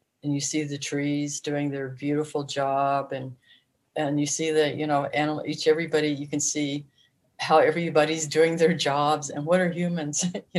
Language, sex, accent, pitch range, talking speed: English, female, American, 135-155 Hz, 180 wpm